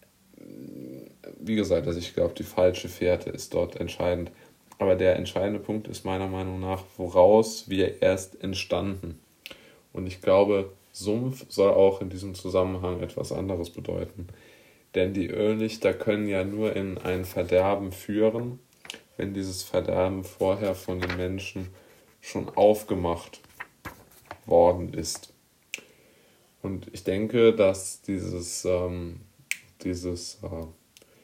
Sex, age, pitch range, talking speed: male, 20-39, 90-110 Hz, 125 wpm